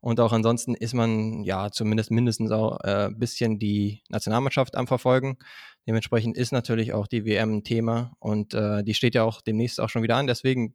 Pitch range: 110-125 Hz